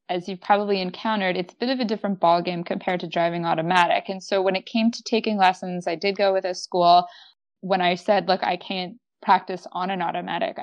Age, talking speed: 20-39, 220 wpm